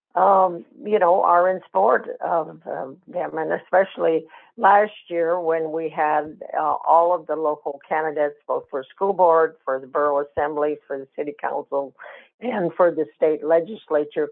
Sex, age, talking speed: female, 60-79, 165 wpm